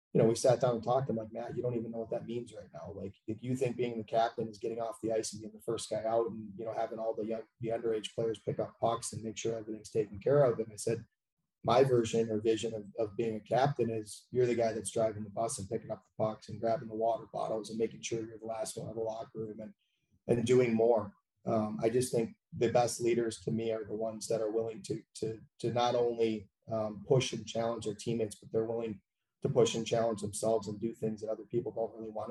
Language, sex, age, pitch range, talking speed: English, male, 30-49, 110-115 Hz, 270 wpm